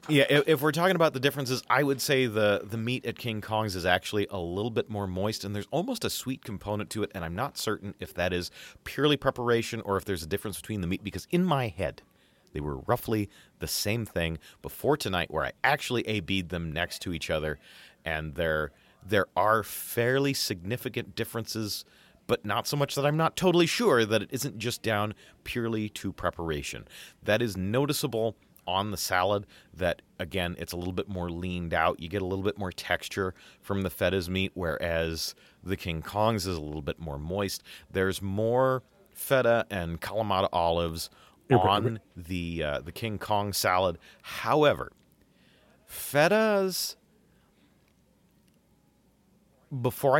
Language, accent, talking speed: English, American, 175 wpm